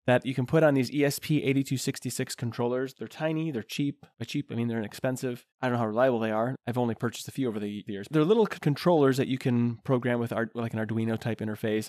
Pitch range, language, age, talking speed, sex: 115-135 Hz, English, 20-39, 230 wpm, male